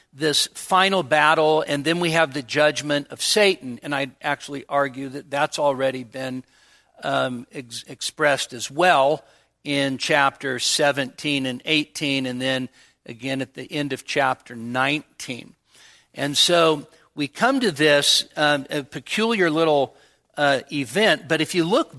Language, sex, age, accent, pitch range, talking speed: English, male, 50-69, American, 140-160 Hz, 145 wpm